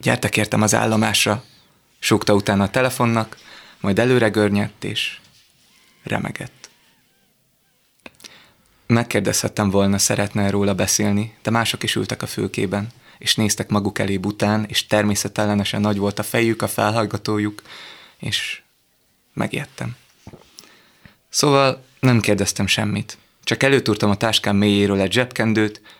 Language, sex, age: Hungarian, male, 20-39